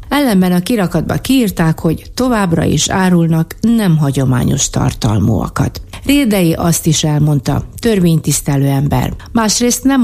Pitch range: 150-185 Hz